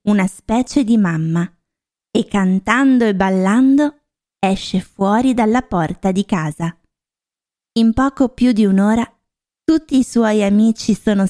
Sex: female